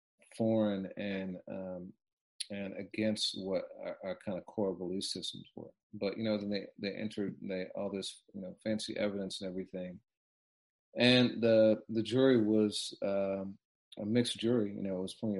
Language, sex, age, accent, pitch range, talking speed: English, male, 40-59, American, 95-110 Hz, 170 wpm